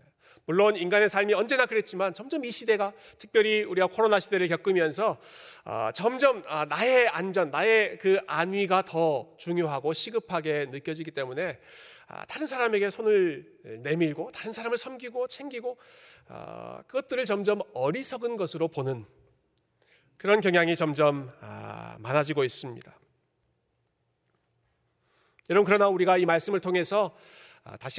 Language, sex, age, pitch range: Korean, male, 40-59, 150-210 Hz